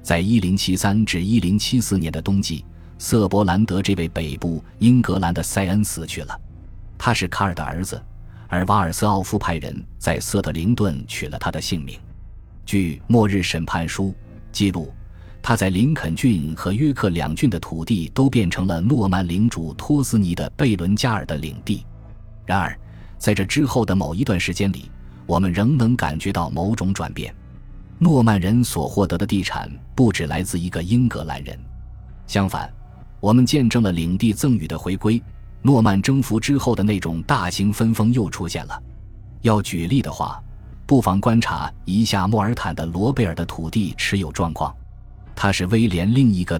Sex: male